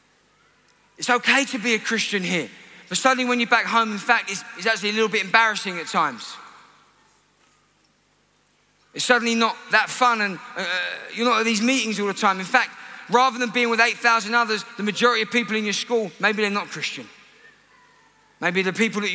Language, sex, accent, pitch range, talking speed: English, male, British, 200-245 Hz, 195 wpm